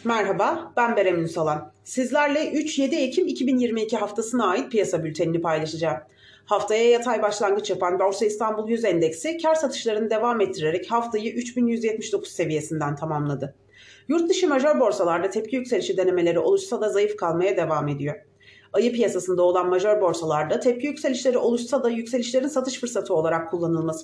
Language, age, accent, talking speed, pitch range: Turkish, 40-59, native, 135 wpm, 170-255 Hz